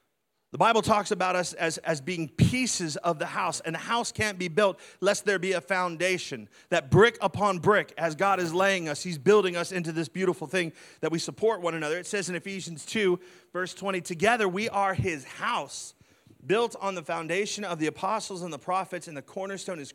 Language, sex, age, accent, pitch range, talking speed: English, male, 30-49, American, 155-195 Hz, 210 wpm